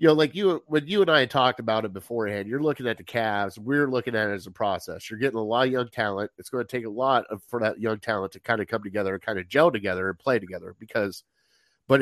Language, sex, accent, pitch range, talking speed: English, male, American, 115-150 Hz, 280 wpm